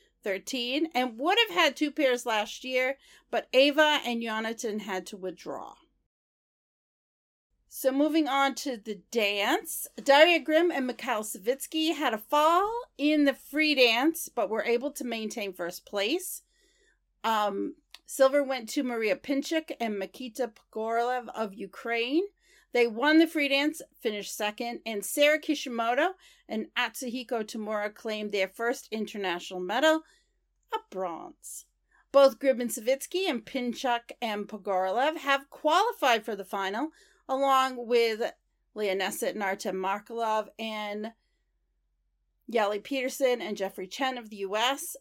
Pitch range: 215-290 Hz